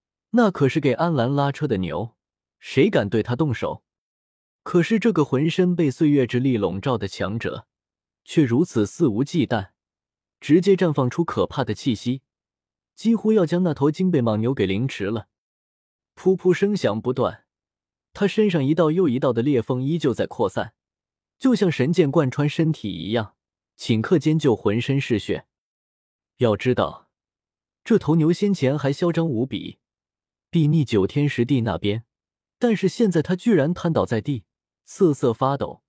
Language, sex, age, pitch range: Chinese, male, 20-39, 115-170 Hz